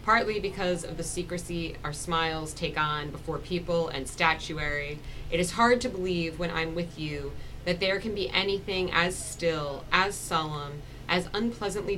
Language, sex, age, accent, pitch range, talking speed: English, female, 20-39, American, 155-185 Hz, 165 wpm